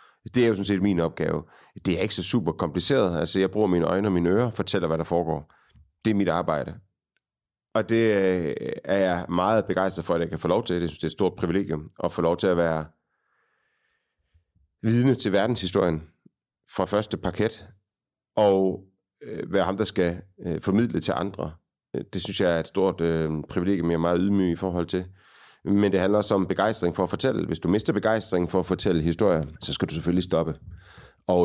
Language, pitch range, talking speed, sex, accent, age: Danish, 85-100 Hz, 200 wpm, male, native, 30-49